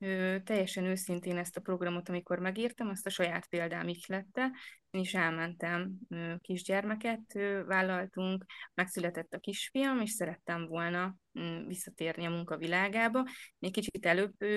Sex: female